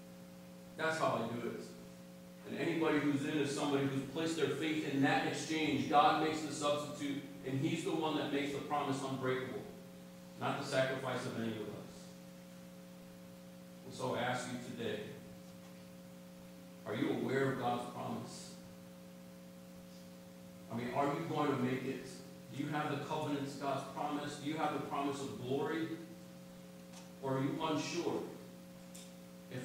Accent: American